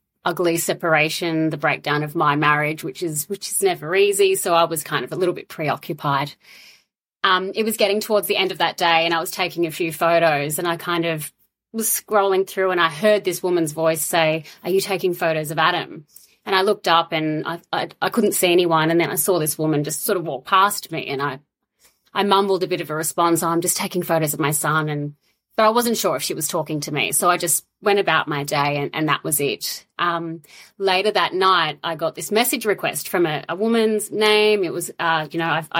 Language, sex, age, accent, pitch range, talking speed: English, female, 30-49, Australian, 160-195 Hz, 240 wpm